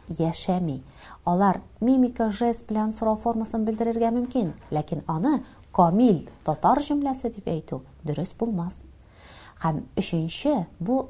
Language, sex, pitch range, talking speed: Russian, female, 150-215 Hz, 115 wpm